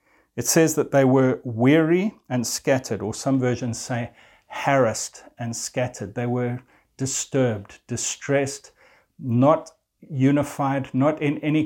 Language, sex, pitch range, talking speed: English, male, 120-145 Hz, 125 wpm